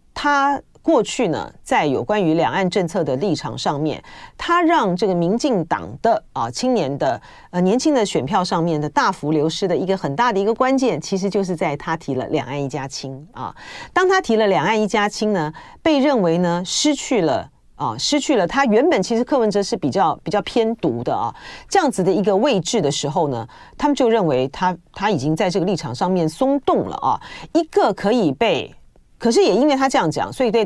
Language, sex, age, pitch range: Chinese, female, 40-59, 185-285 Hz